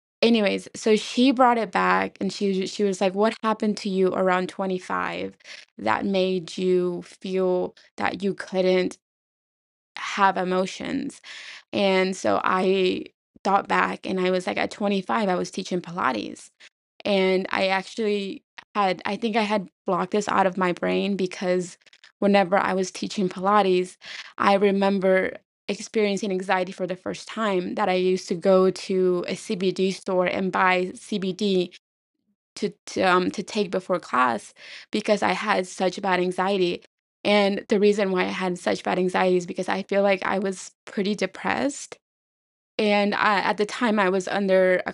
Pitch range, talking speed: 185-205 Hz, 160 wpm